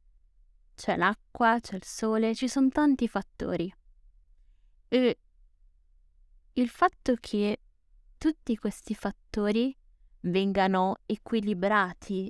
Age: 20-39